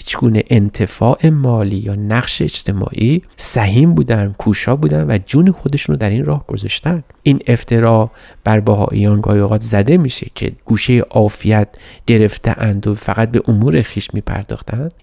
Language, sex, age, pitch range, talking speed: Persian, male, 30-49, 105-130 Hz, 140 wpm